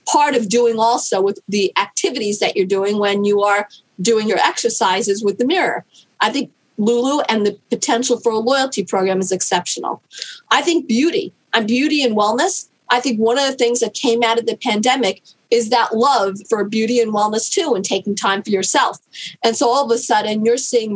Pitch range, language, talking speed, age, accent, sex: 210-255 Hz, English, 205 wpm, 40-59, American, female